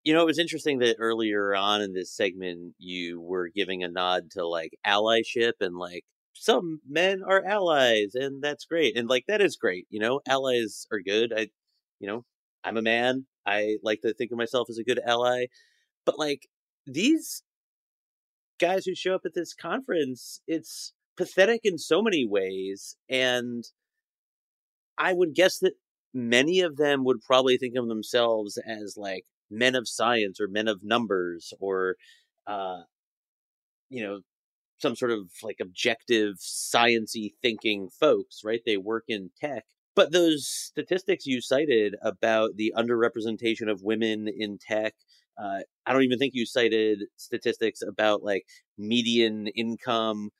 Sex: male